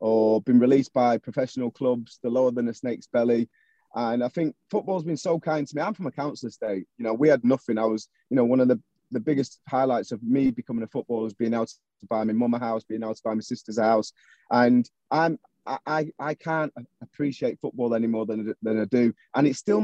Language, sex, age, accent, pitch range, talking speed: English, male, 30-49, British, 115-150 Hz, 240 wpm